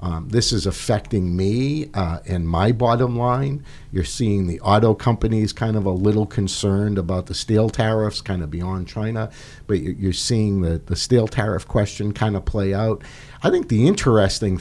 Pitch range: 95-120 Hz